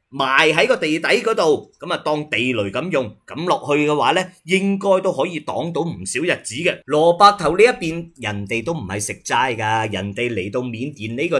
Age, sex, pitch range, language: 30-49, male, 130-210 Hz, Chinese